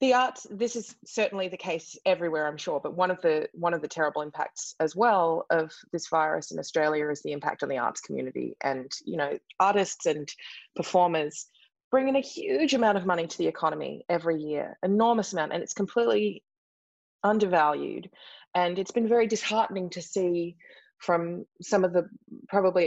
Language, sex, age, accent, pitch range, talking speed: English, female, 20-39, Australian, 155-195 Hz, 180 wpm